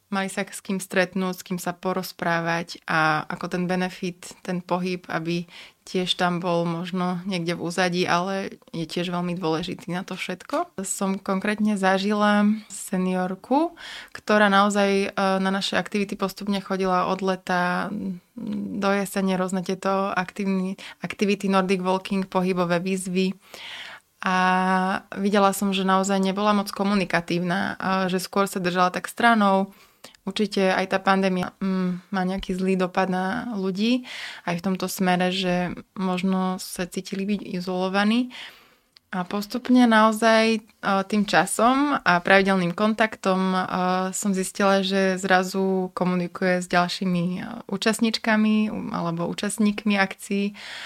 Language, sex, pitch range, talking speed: Slovak, female, 185-205 Hz, 125 wpm